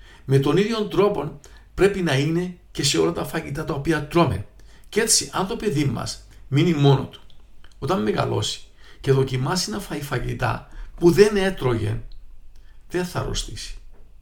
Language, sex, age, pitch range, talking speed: Greek, male, 50-69, 100-145 Hz, 155 wpm